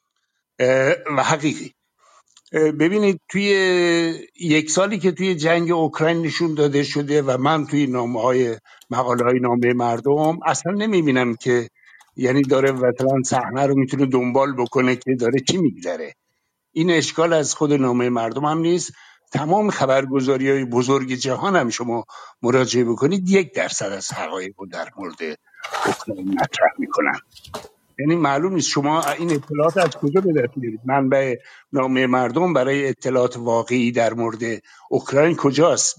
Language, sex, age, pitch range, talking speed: English, male, 60-79, 125-160 Hz, 135 wpm